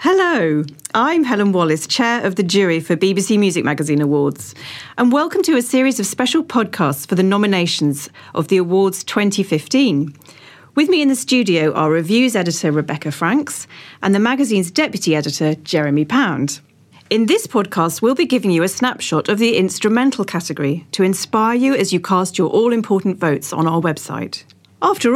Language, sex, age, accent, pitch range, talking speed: English, female, 40-59, British, 155-230 Hz, 170 wpm